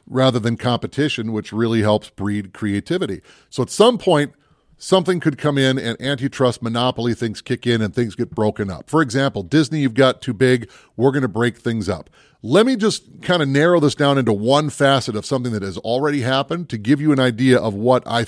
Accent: American